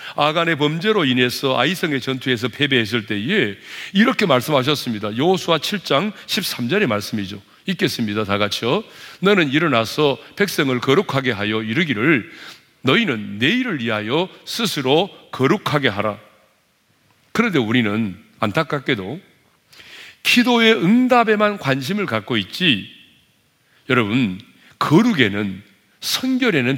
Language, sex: Korean, male